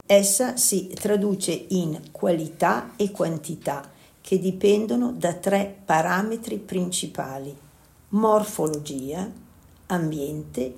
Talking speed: 85 wpm